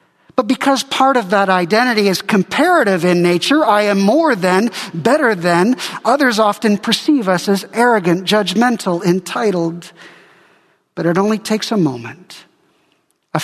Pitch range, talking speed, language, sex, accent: 170-220 Hz, 140 wpm, English, male, American